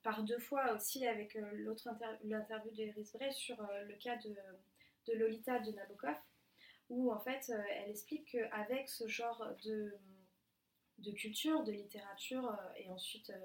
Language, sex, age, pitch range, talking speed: French, female, 20-39, 205-240 Hz, 145 wpm